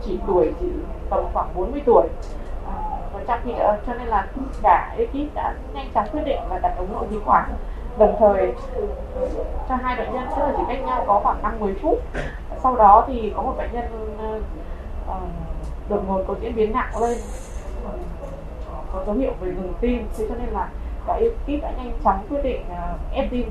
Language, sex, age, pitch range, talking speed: Vietnamese, female, 20-39, 210-280 Hz, 200 wpm